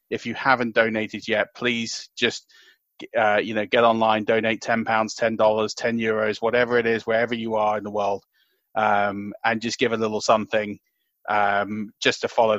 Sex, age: male, 30-49